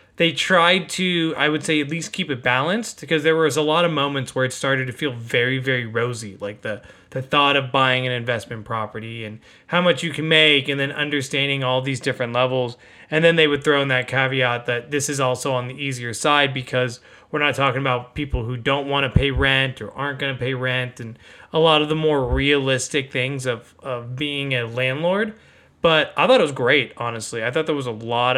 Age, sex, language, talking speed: 20-39, male, English, 230 wpm